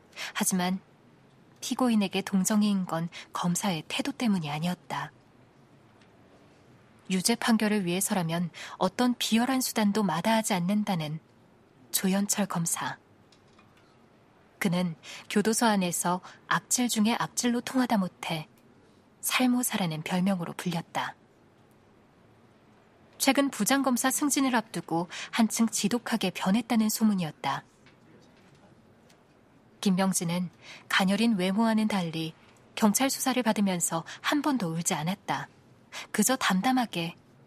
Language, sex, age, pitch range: Korean, female, 20-39, 175-230 Hz